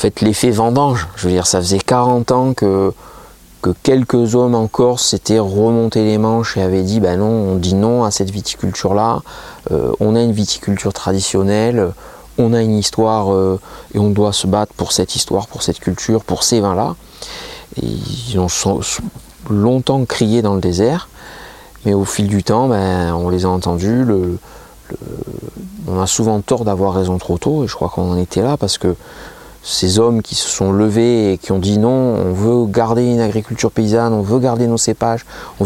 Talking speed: 195 wpm